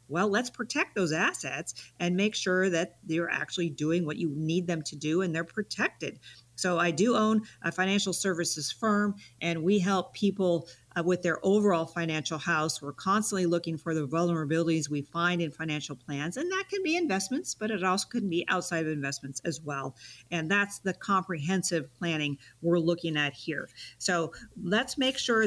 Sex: female